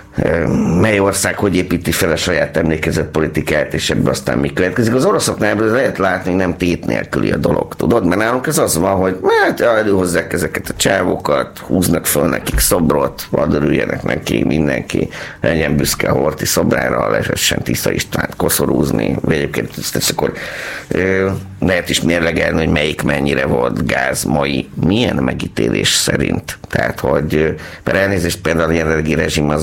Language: Hungarian